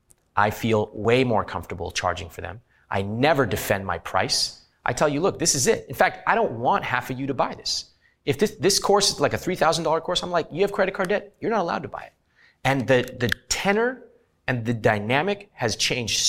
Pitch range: 110-150 Hz